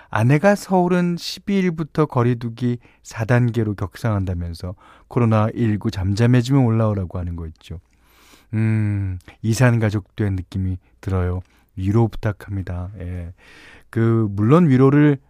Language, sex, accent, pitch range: Korean, male, native, 90-135 Hz